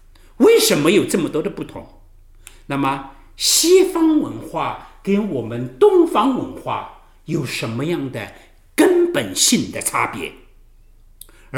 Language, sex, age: Chinese, male, 50-69